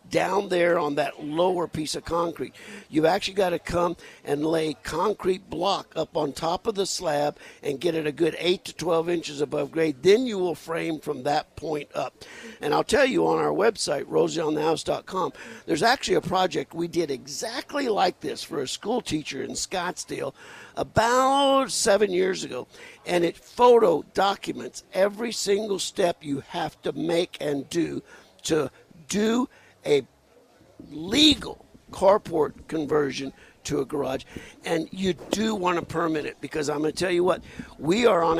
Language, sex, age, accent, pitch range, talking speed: English, male, 60-79, American, 155-200 Hz, 170 wpm